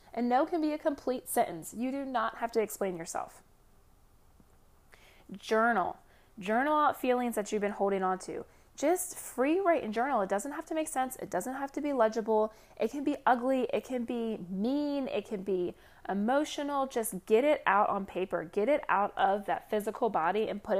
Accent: American